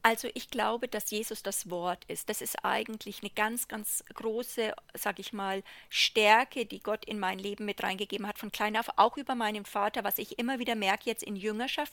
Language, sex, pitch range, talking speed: German, female, 215-265 Hz, 210 wpm